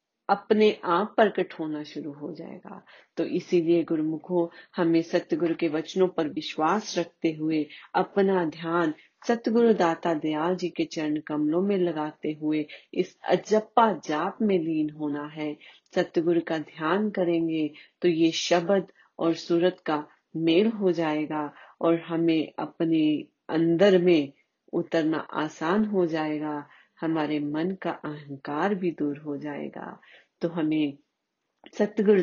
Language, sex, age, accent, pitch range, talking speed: Hindi, female, 30-49, native, 155-180 Hz, 130 wpm